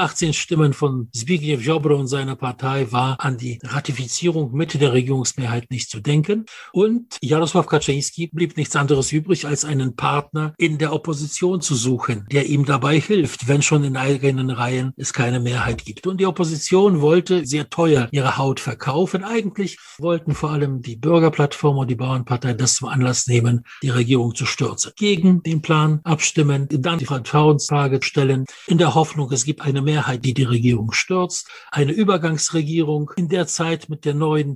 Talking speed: 170 wpm